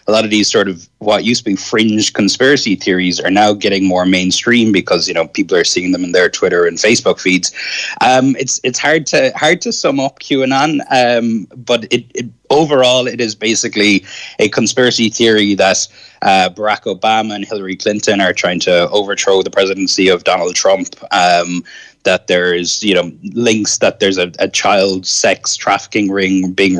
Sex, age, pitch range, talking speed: male, 20-39, 95-130 Hz, 190 wpm